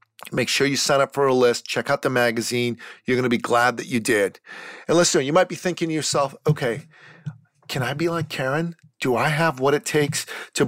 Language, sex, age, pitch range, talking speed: English, male, 40-59, 140-175 Hz, 230 wpm